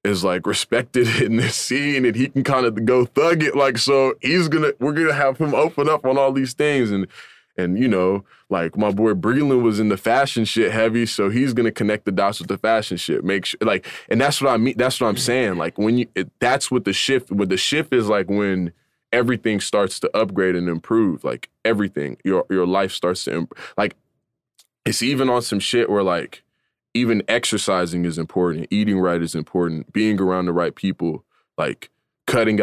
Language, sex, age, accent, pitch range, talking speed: English, male, 20-39, American, 95-120 Hz, 220 wpm